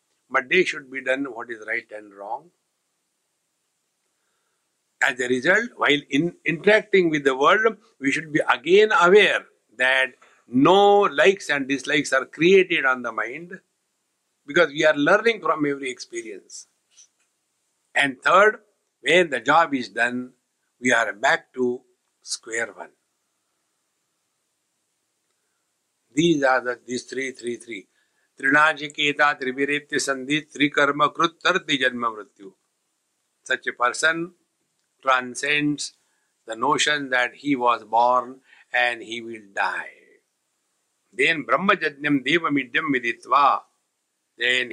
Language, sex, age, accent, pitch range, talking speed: English, male, 60-79, Indian, 125-170 Hz, 125 wpm